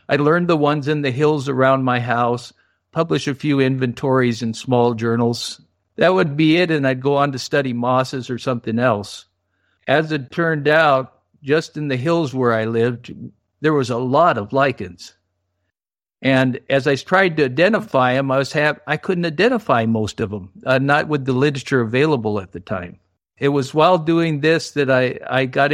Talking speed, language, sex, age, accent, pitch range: 190 wpm, English, male, 50-69, American, 115-150 Hz